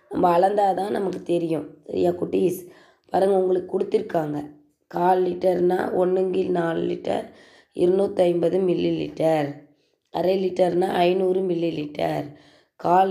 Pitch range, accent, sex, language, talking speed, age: 175-195 Hz, native, female, Tamil, 105 wpm, 20-39